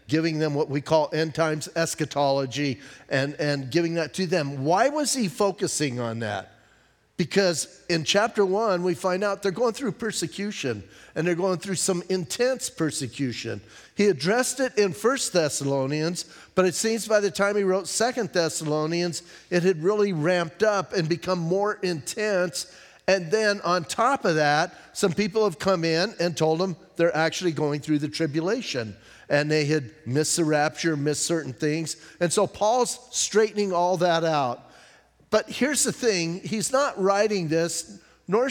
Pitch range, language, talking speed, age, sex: 155-200 Hz, English, 170 wpm, 50-69, male